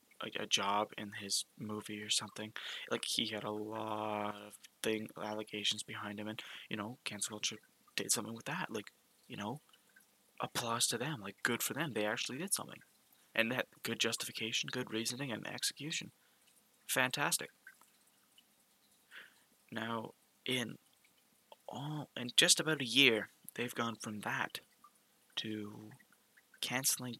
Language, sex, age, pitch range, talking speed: English, male, 20-39, 105-120 Hz, 140 wpm